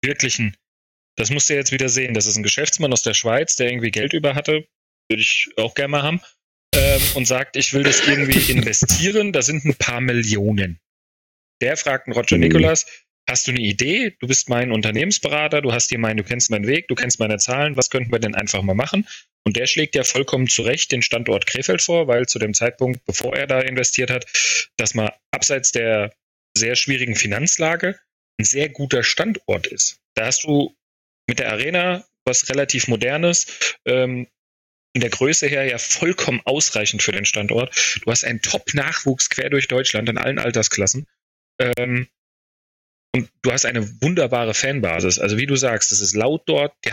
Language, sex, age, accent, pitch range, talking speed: German, male, 30-49, German, 110-135 Hz, 185 wpm